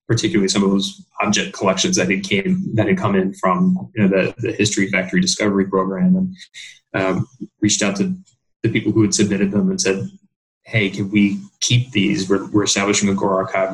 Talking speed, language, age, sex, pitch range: 200 wpm, English, 20-39, male, 95-115 Hz